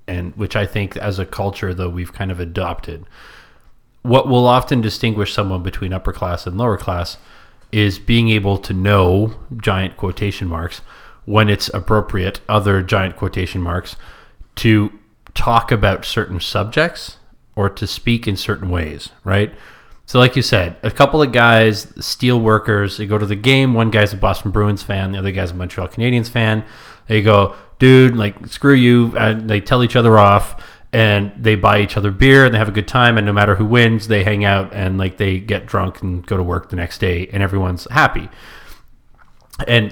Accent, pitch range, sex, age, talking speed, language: American, 95-115 Hz, male, 30-49, 190 wpm, English